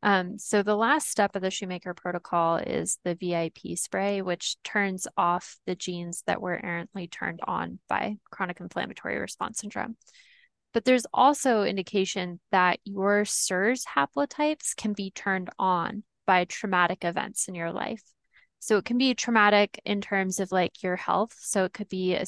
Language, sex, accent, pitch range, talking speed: English, female, American, 180-215 Hz, 165 wpm